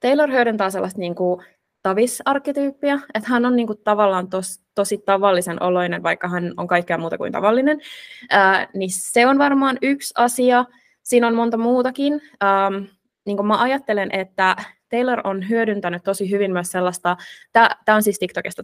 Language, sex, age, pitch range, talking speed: Finnish, female, 20-39, 180-220 Hz, 160 wpm